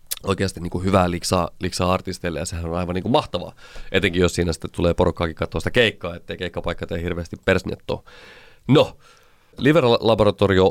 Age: 30-49